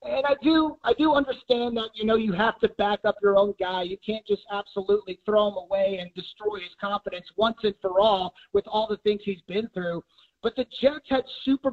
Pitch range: 200-250 Hz